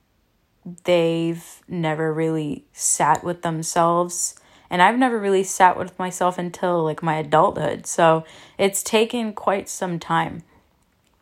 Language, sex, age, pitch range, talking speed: English, female, 20-39, 165-190 Hz, 125 wpm